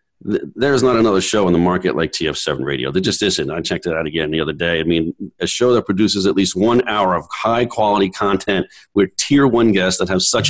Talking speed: 235 wpm